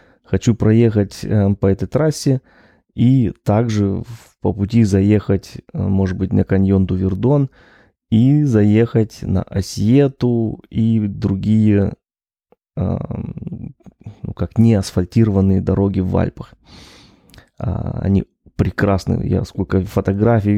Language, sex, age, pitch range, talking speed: Russian, male, 20-39, 100-120 Hz, 95 wpm